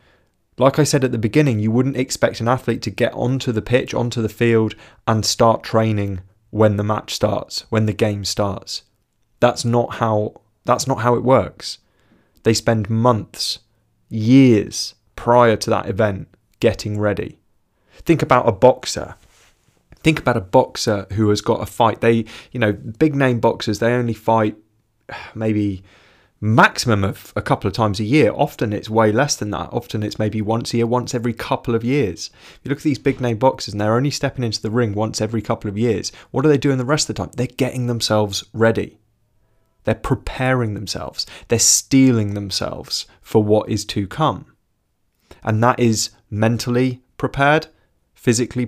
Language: English